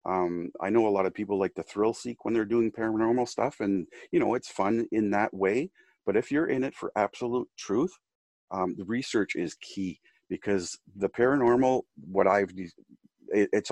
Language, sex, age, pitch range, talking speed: English, male, 40-59, 95-115 Hz, 190 wpm